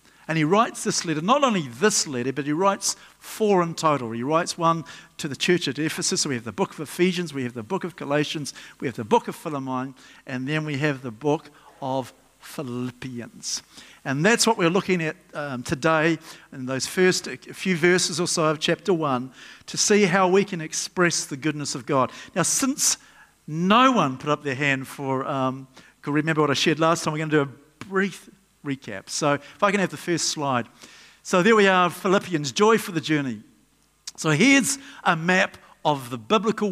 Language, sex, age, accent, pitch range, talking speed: English, male, 50-69, Australian, 145-195 Hz, 210 wpm